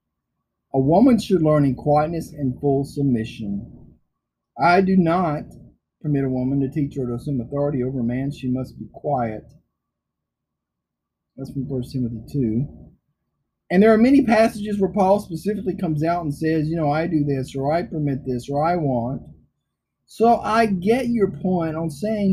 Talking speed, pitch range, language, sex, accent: 170 wpm, 125-175 Hz, English, male, American